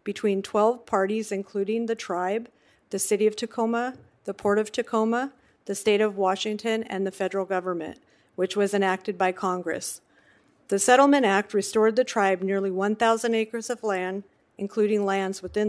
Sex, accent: female, American